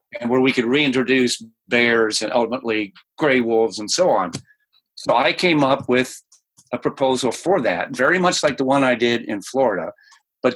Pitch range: 115-150 Hz